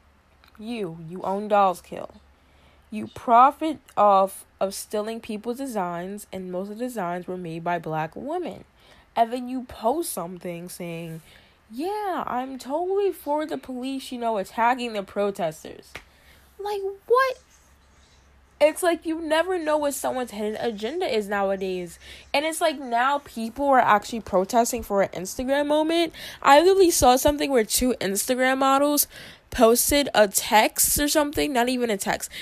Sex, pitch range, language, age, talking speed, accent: female, 205-280 Hz, English, 10-29, 150 wpm, American